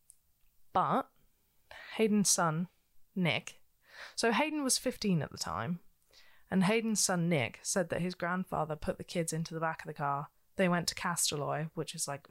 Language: English